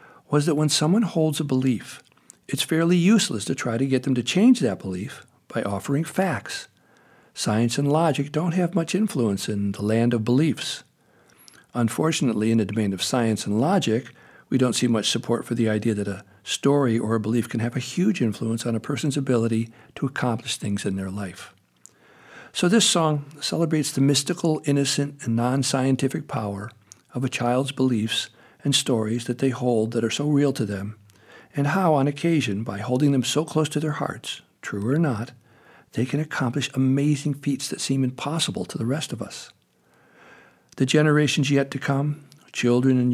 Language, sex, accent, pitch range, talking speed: English, male, American, 115-145 Hz, 180 wpm